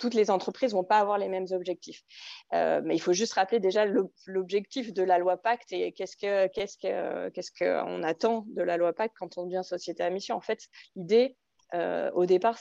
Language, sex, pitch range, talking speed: French, female, 180-235 Hz, 220 wpm